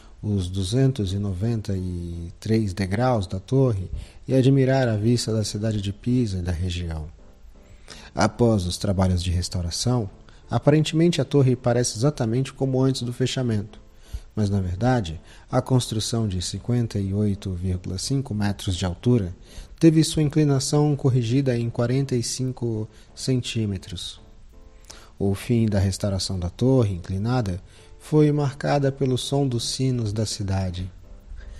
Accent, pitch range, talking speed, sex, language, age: Brazilian, 95-125 Hz, 120 wpm, male, Portuguese, 40-59